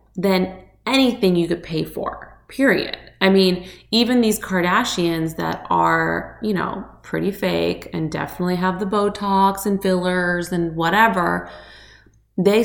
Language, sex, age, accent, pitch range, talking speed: English, female, 20-39, American, 165-200 Hz, 135 wpm